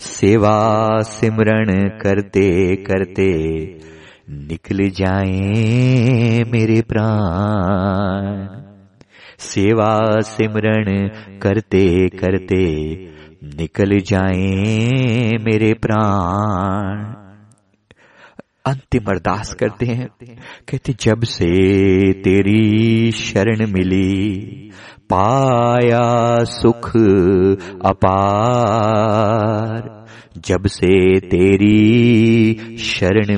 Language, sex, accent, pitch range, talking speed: Hindi, male, native, 95-115 Hz, 60 wpm